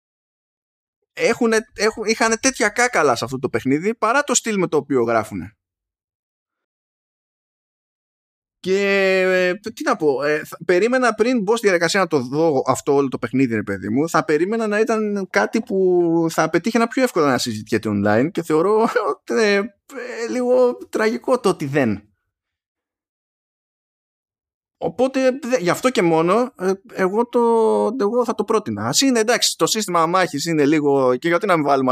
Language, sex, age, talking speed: Greek, male, 20-39, 165 wpm